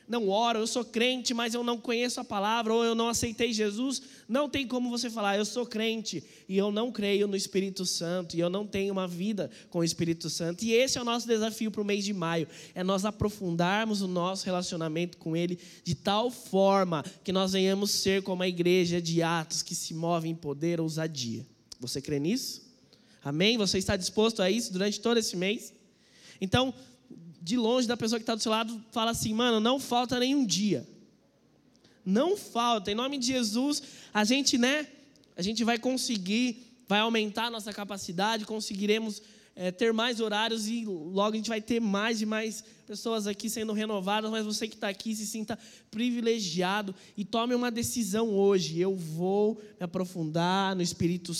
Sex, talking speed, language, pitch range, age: male, 190 wpm, Portuguese, 180-230 Hz, 20-39